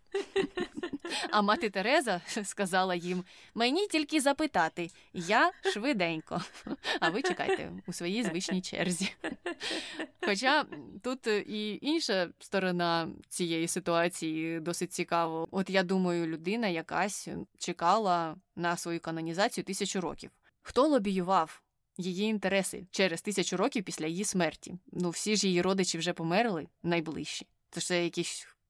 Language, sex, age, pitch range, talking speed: Ukrainian, female, 20-39, 175-225 Hz, 120 wpm